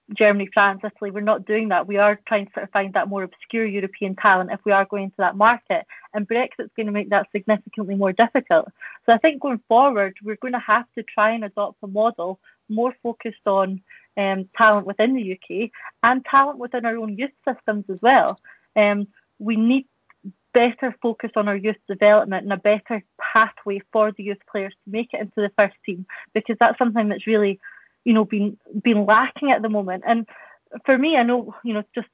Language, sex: English, female